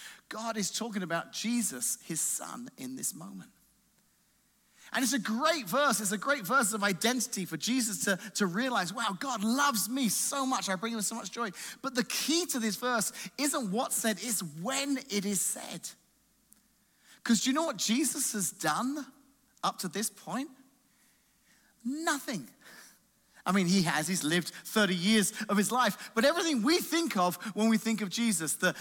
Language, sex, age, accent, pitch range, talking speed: English, male, 30-49, British, 195-255 Hz, 180 wpm